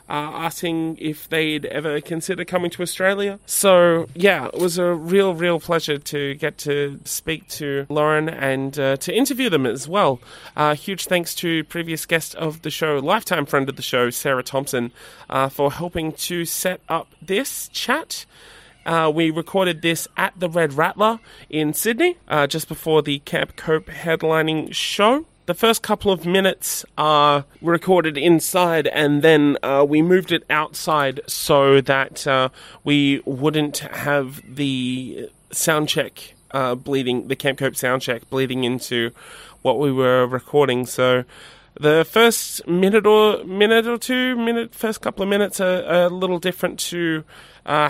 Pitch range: 140-180 Hz